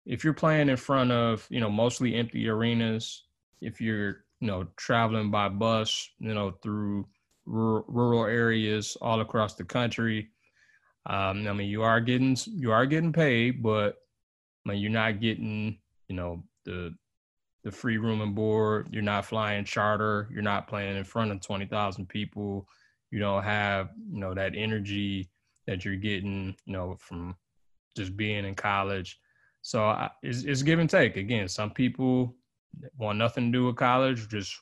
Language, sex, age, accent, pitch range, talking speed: English, male, 20-39, American, 100-115 Hz, 170 wpm